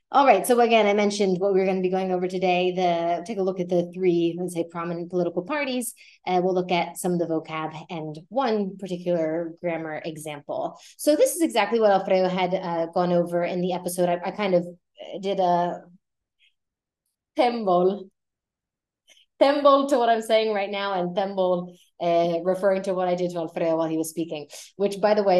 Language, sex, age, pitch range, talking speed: Spanish, female, 20-39, 175-205 Hz, 200 wpm